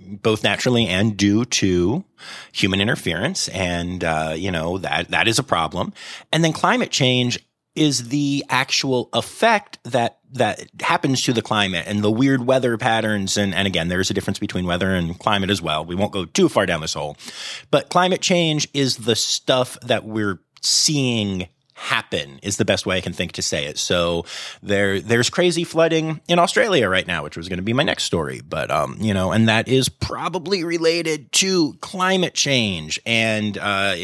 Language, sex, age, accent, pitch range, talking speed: English, male, 30-49, American, 95-140 Hz, 190 wpm